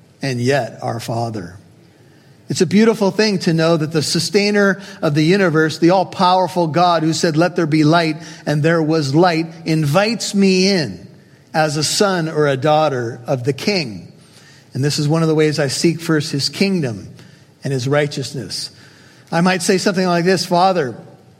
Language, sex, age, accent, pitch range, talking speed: English, male, 50-69, American, 145-180 Hz, 175 wpm